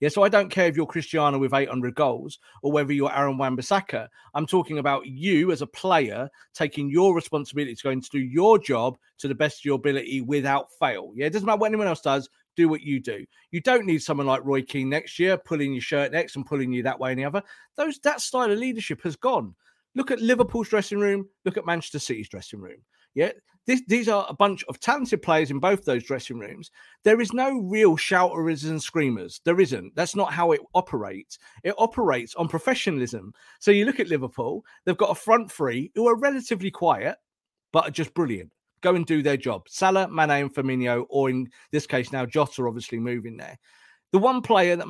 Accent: British